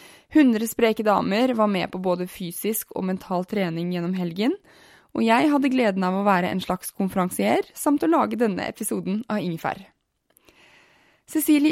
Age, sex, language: 20-39, female, English